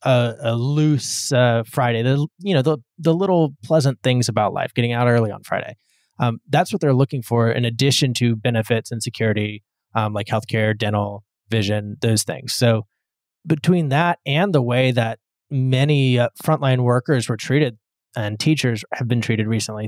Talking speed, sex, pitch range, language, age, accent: 175 wpm, male, 115-145 Hz, English, 20-39, American